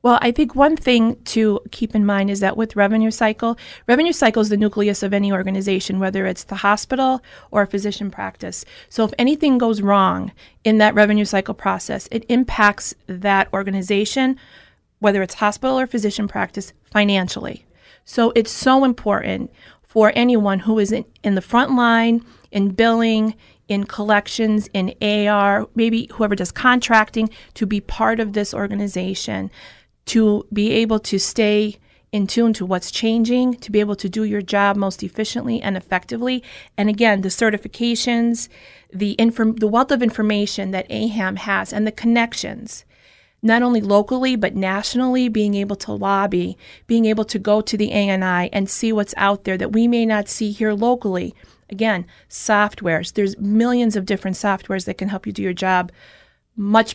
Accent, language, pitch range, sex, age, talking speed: American, English, 200-230 Hz, female, 30-49, 170 wpm